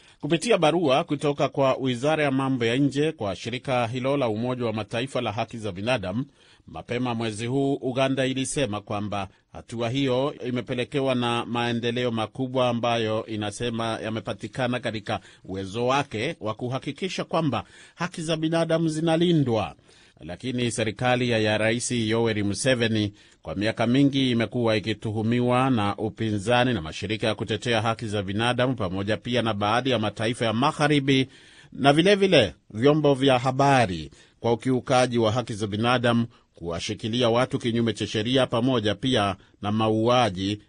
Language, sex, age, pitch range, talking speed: Swahili, male, 30-49, 110-130 Hz, 140 wpm